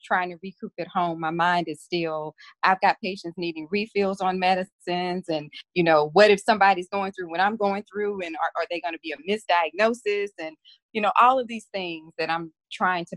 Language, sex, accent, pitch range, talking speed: English, female, American, 165-200 Hz, 220 wpm